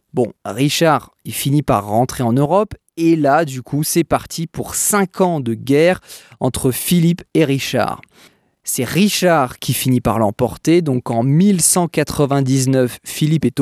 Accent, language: French, French